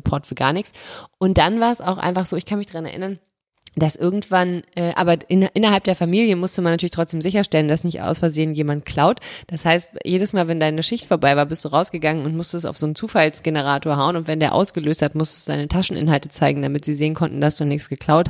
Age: 20-39